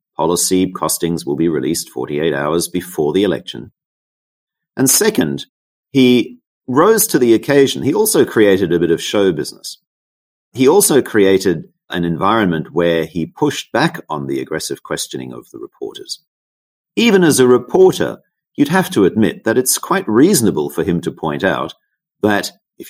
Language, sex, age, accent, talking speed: English, male, 50-69, Australian, 155 wpm